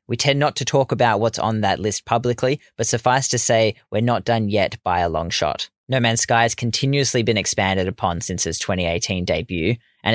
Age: 20-39